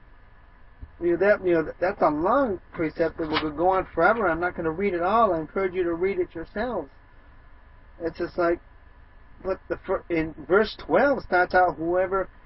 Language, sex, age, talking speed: English, male, 50-69, 190 wpm